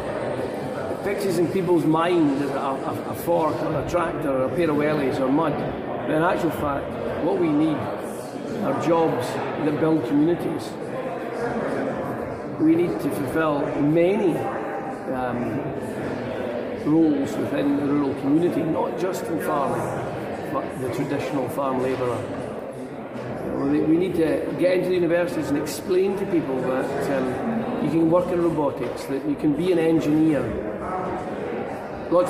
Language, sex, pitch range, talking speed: English, male, 140-170 Hz, 140 wpm